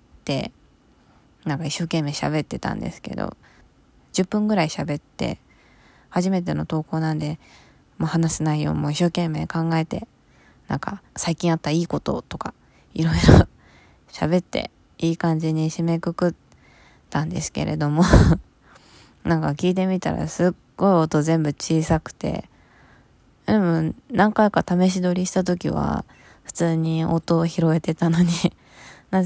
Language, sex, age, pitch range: Japanese, female, 20-39, 155-175 Hz